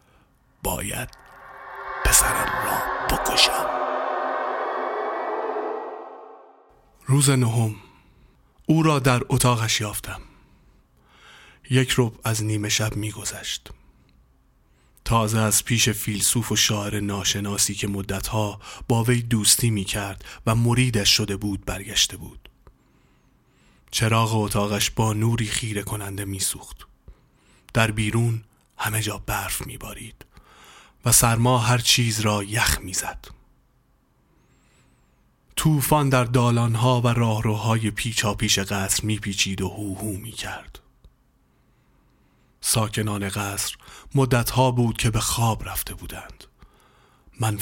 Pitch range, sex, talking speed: 100-120 Hz, male, 105 wpm